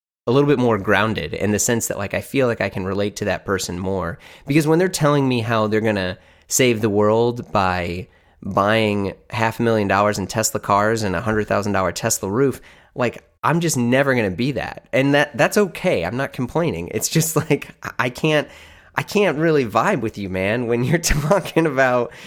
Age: 30-49